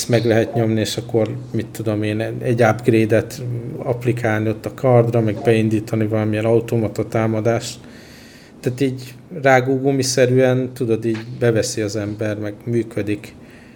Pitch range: 115-125 Hz